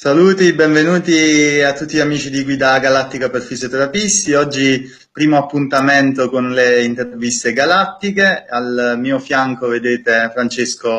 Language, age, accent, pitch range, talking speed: Italian, 20-39, native, 115-135 Hz, 125 wpm